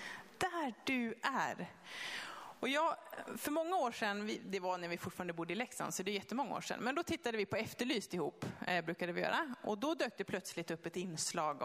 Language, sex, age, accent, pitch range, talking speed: Swedish, female, 30-49, native, 175-225 Hz, 210 wpm